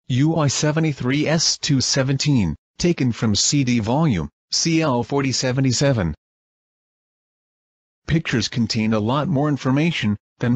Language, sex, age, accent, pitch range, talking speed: English, male, 40-59, American, 110-140 Hz, 80 wpm